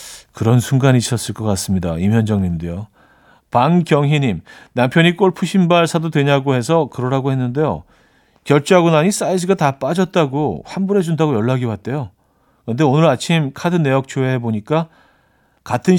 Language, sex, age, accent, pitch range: Korean, male, 40-59, native, 115-165 Hz